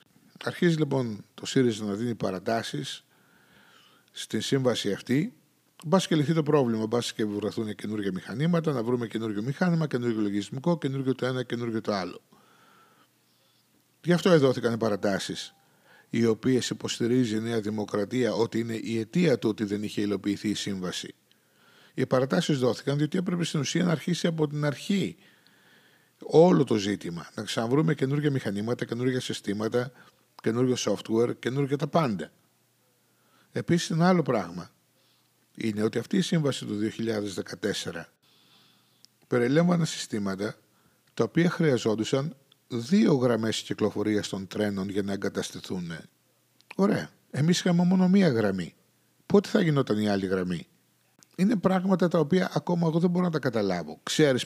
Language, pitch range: Greek, 110-160 Hz